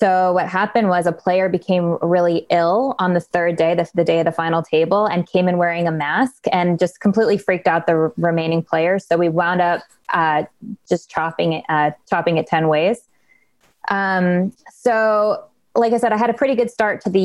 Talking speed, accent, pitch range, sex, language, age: 205 wpm, American, 170-195 Hz, female, English, 20-39